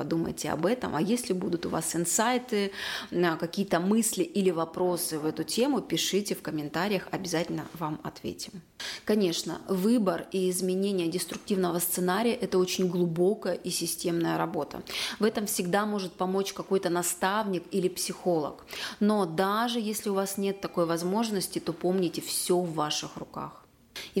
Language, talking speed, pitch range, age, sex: Russian, 145 wpm, 170-200 Hz, 30-49, female